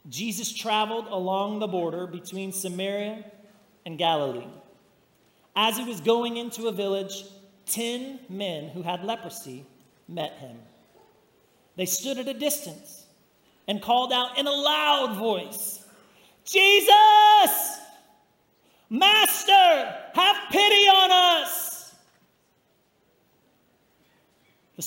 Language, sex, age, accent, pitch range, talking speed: English, male, 40-59, American, 200-245 Hz, 100 wpm